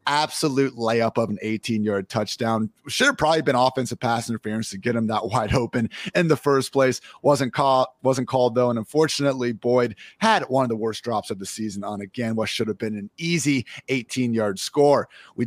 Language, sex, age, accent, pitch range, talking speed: English, male, 30-49, American, 110-135 Hz, 195 wpm